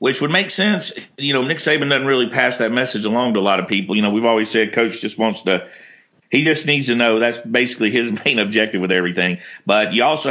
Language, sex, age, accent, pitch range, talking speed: English, male, 50-69, American, 110-135 Hz, 250 wpm